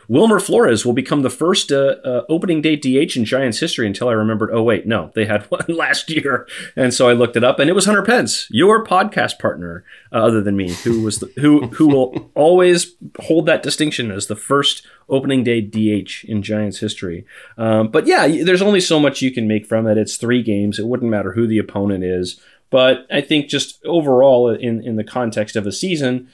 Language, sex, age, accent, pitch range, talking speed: English, male, 30-49, American, 105-140 Hz, 220 wpm